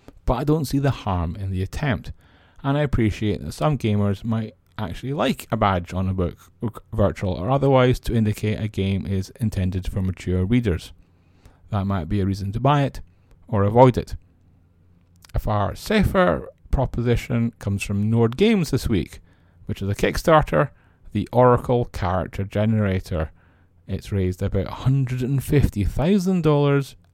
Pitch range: 90-115 Hz